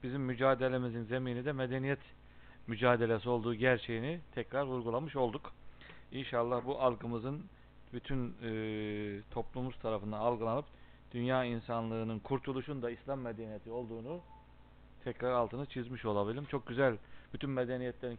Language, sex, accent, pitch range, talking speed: Turkish, male, native, 105-125 Hz, 110 wpm